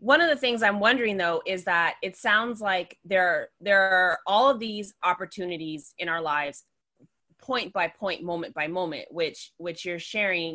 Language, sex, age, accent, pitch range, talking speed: English, female, 20-39, American, 175-215 Hz, 180 wpm